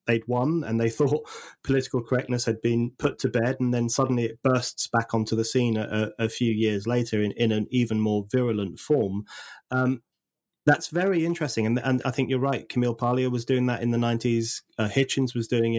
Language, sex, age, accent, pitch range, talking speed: English, male, 30-49, British, 105-125 Hz, 210 wpm